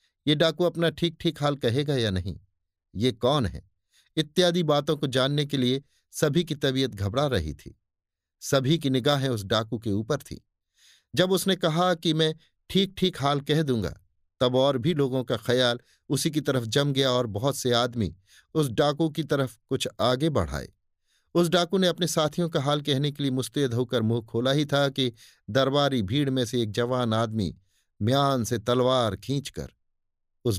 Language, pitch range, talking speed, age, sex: Hindi, 110-155 Hz, 180 wpm, 50-69, male